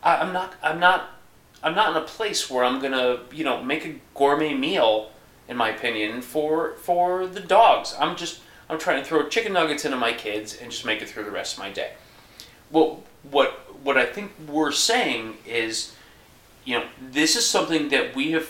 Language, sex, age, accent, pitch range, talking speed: English, male, 30-49, American, 125-180 Hz, 200 wpm